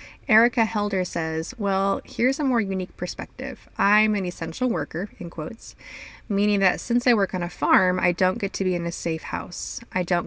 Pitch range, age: 165-195 Hz, 20-39